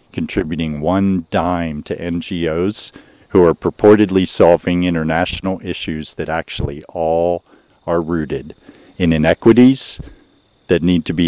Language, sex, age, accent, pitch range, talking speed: English, male, 50-69, American, 80-95 Hz, 115 wpm